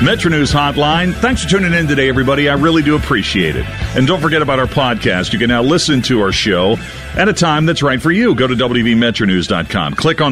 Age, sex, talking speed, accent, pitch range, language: 50-69, male, 225 wpm, American, 105-145 Hz, English